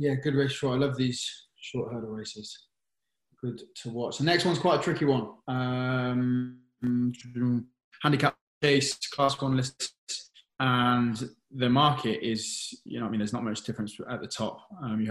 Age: 20-39